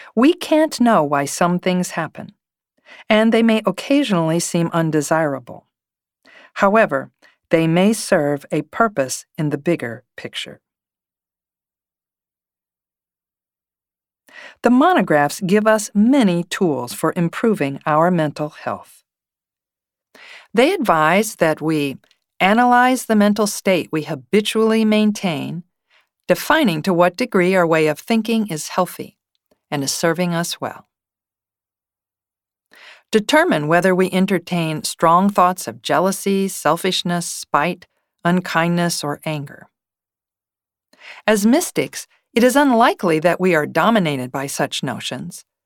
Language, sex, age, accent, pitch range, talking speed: English, female, 50-69, American, 150-215 Hz, 110 wpm